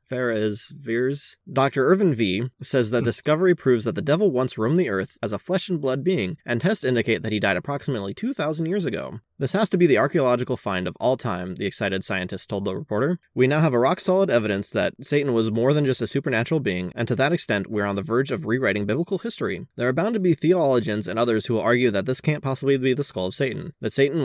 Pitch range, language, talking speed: 110-150 Hz, English, 245 wpm